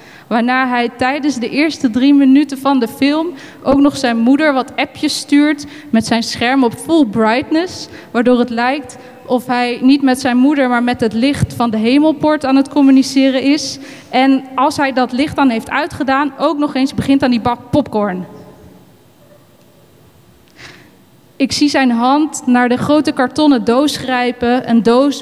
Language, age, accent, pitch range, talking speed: Dutch, 20-39, Dutch, 235-275 Hz, 170 wpm